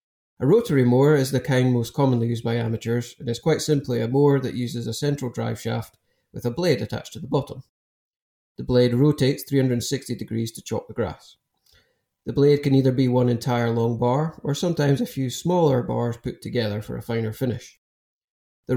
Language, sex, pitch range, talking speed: English, male, 115-135 Hz, 195 wpm